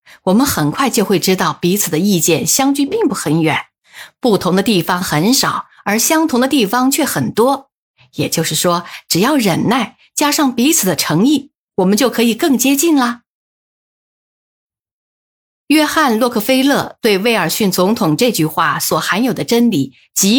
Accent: native